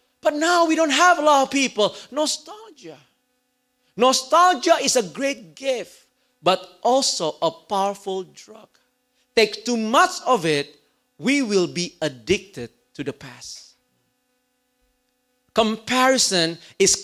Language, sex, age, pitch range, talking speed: English, male, 40-59, 190-260 Hz, 120 wpm